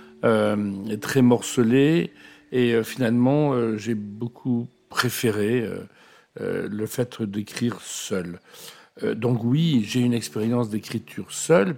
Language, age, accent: French, 60-79, French